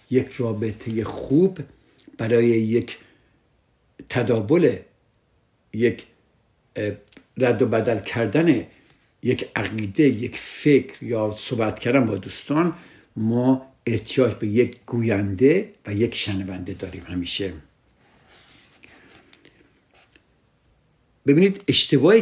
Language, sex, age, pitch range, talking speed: Persian, male, 60-79, 110-135 Hz, 90 wpm